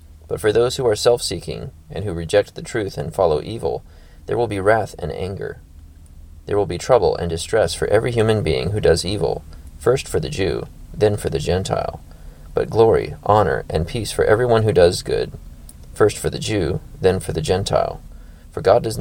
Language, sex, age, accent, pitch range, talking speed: English, male, 20-39, American, 75-105 Hz, 195 wpm